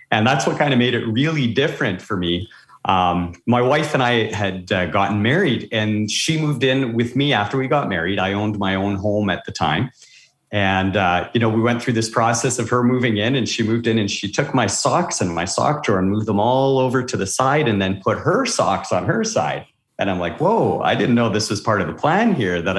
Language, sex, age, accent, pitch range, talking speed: English, male, 40-59, American, 105-130 Hz, 250 wpm